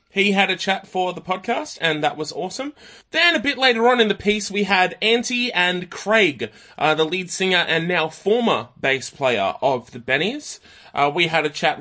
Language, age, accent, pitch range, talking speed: English, 20-39, Australian, 145-210 Hz, 210 wpm